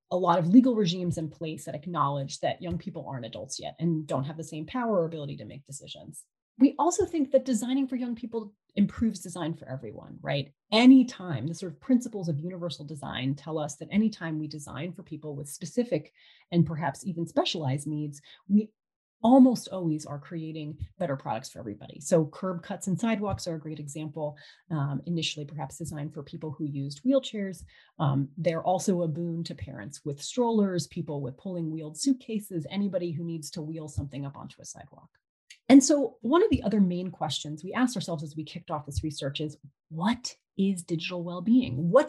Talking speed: 195 wpm